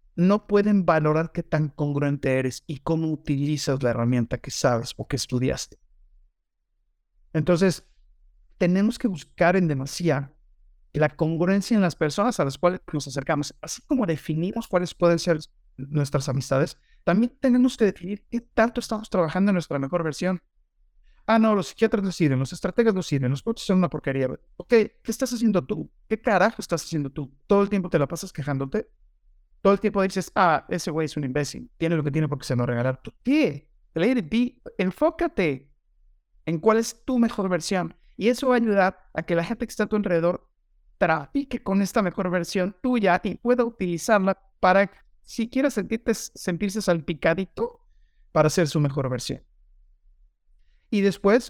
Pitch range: 145-215 Hz